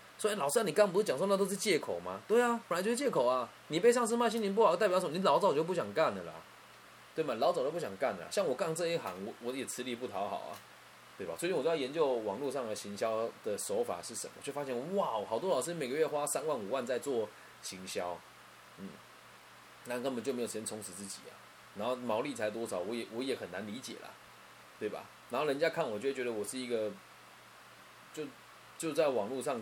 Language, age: Chinese, 20-39